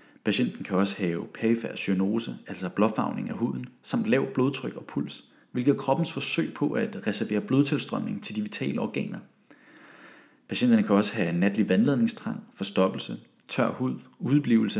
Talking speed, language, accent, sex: 150 wpm, Danish, native, male